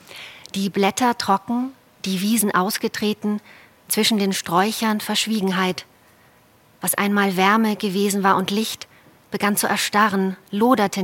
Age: 30-49